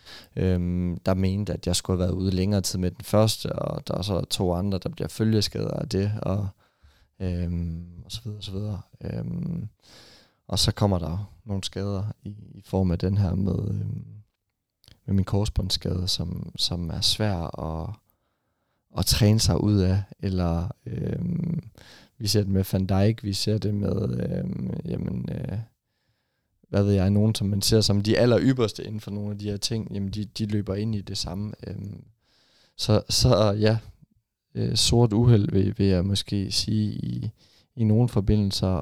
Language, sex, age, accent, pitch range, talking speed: Danish, male, 20-39, native, 95-110 Hz, 180 wpm